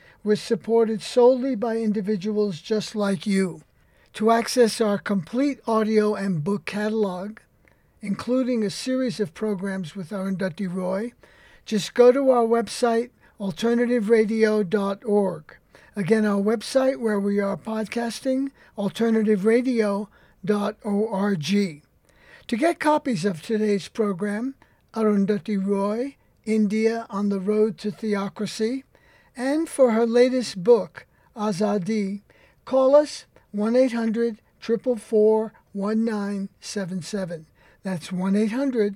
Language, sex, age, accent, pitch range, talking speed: English, male, 60-79, American, 200-235 Hz, 100 wpm